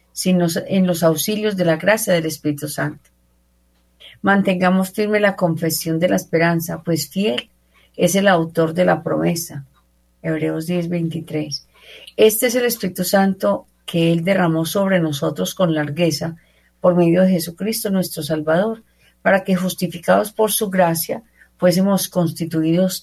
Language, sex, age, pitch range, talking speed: Spanish, female, 50-69, 160-190 Hz, 140 wpm